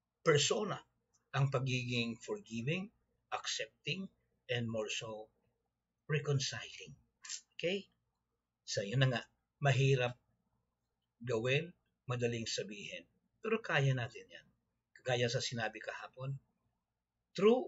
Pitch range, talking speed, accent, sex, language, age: 120-175 Hz, 90 wpm, native, male, Filipino, 60-79